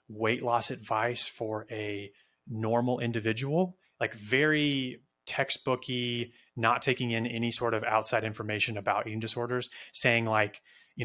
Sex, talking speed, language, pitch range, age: male, 130 wpm, English, 110-125 Hz, 30-49